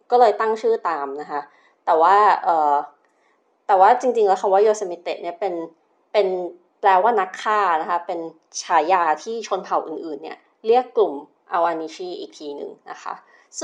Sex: female